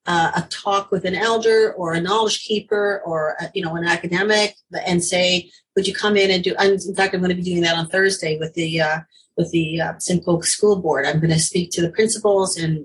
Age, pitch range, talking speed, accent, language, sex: 40-59, 165-195 Hz, 245 wpm, American, English, female